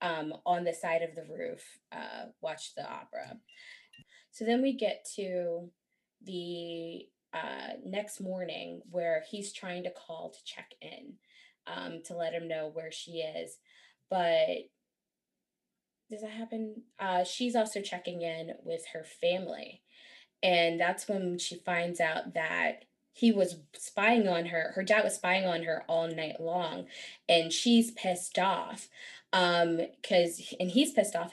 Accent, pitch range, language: American, 175-225 Hz, English